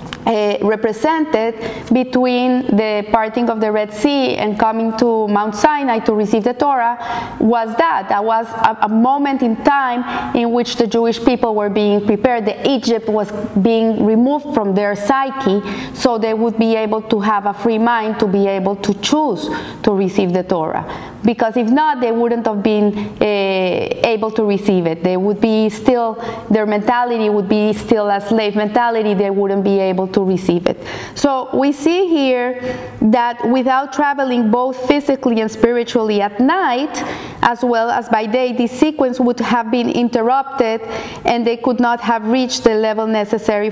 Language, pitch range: English, 215-250 Hz